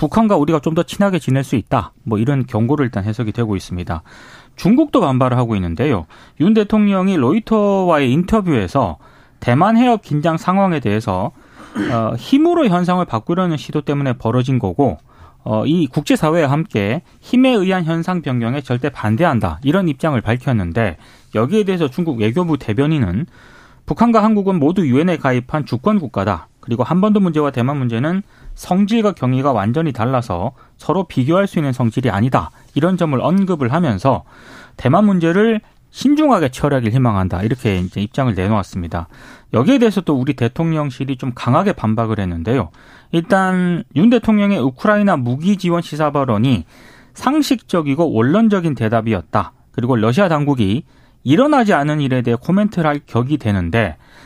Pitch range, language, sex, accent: 115-180 Hz, Korean, male, native